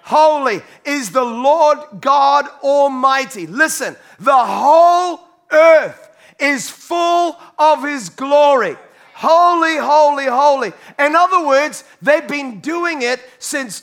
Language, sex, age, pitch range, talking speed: English, male, 40-59, 190-285 Hz, 115 wpm